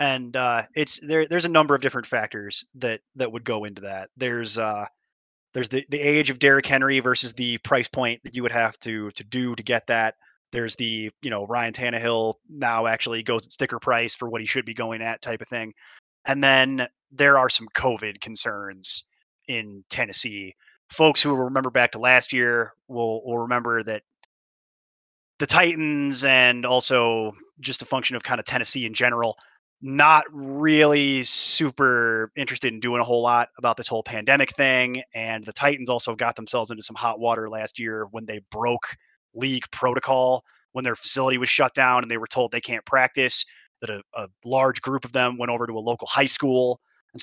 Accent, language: American, English